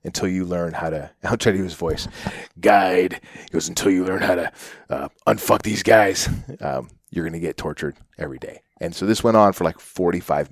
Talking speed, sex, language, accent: 215 wpm, male, English, American